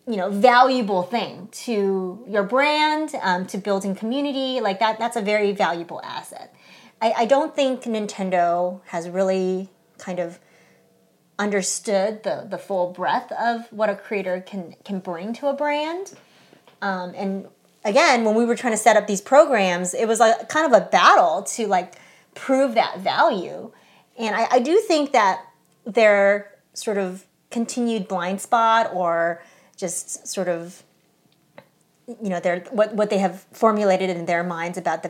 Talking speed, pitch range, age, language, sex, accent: 160 wpm, 185-240 Hz, 30-49, English, female, American